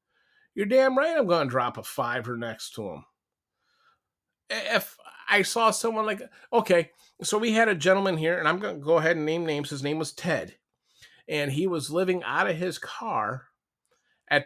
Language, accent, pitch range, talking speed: English, American, 130-185 Hz, 190 wpm